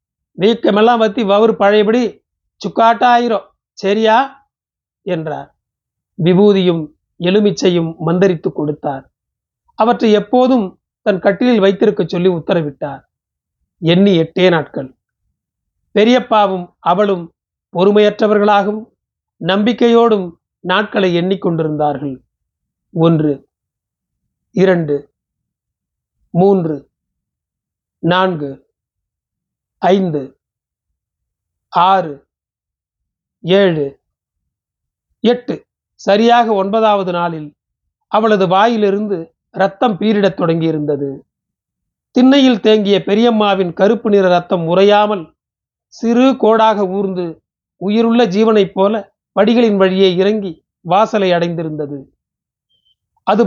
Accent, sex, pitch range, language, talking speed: native, male, 170-220 Hz, Tamil, 70 wpm